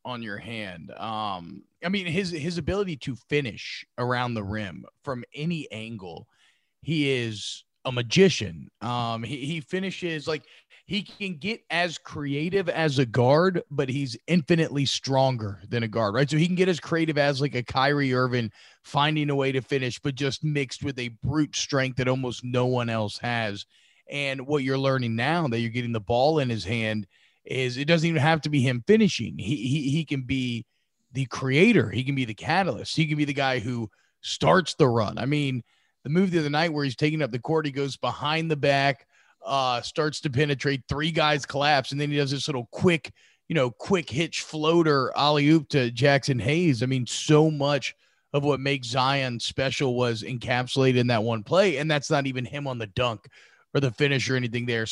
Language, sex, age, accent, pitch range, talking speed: English, male, 30-49, American, 125-155 Hz, 200 wpm